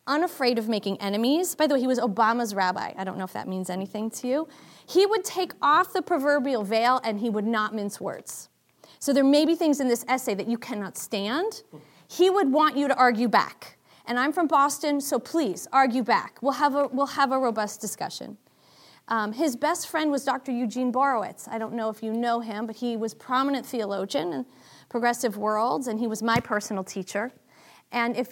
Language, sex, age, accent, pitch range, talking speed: English, female, 30-49, American, 220-290 Hz, 210 wpm